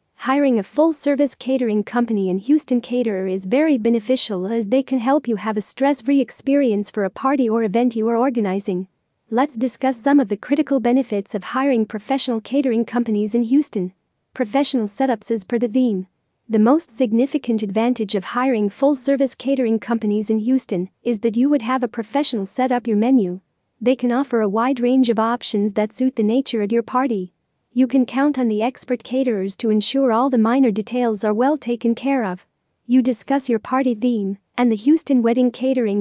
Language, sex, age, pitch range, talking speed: English, female, 40-59, 220-260 Hz, 190 wpm